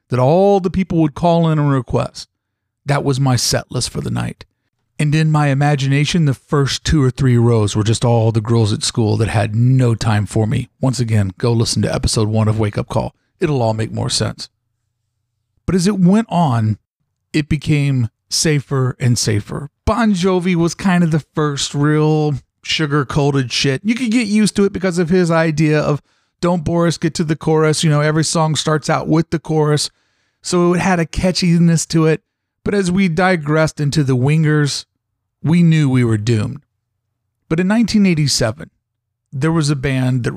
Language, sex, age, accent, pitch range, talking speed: English, male, 40-59, American, 115-165 Hz, 195 wpm